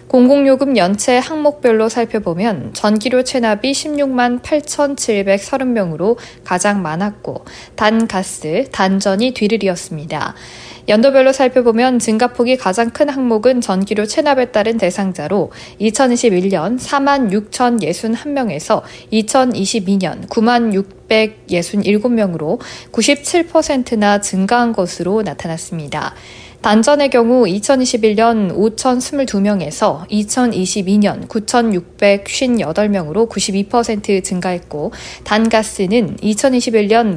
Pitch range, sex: 195-245 Hz, female